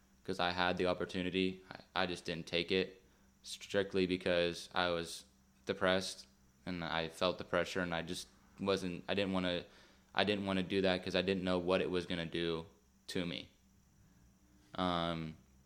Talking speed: 170 wpm